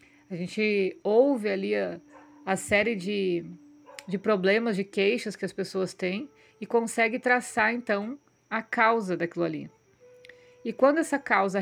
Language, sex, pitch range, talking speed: Portuguese, female, 190-230 Hz, 145 wpm